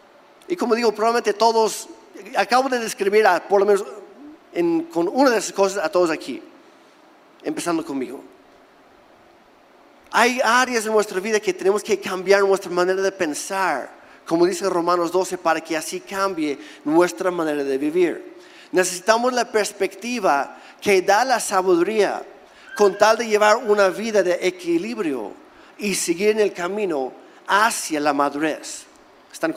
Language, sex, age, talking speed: Spanish, male, 40-59, 145 wpm